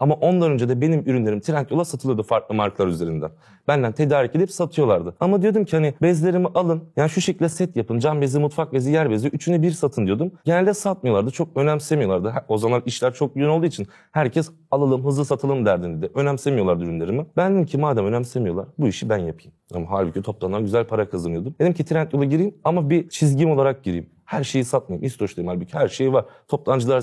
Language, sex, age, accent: Turkish, male, 30-49, native